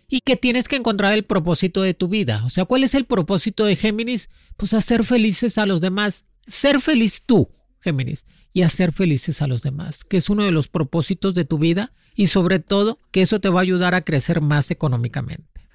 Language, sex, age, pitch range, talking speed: Spanish, male, 40-59, 165-210 Hz, 215 wpm